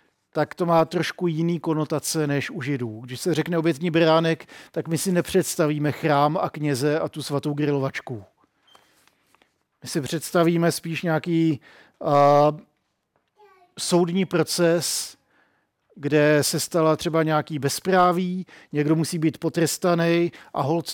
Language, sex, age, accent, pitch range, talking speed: Czech, male, 50-69, native, 145-165 Hz, 130 wpm